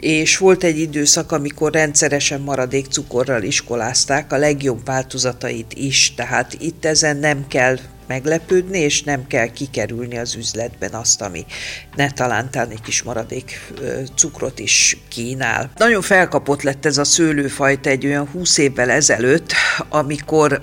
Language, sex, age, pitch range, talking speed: Hungarian, female, 50-69, 125-155 Hz, 135 wpm